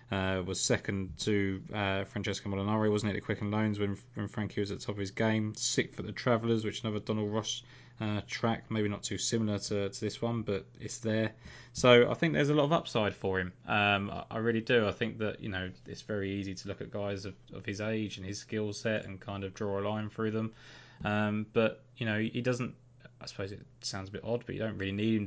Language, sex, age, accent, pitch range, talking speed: English, male, 20-39, British, 100-115 Hz, 255 wpm